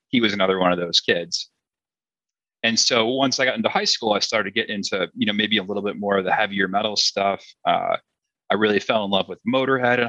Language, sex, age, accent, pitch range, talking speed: English, male, 30-49, American, 100-125 Hz, 245 wpm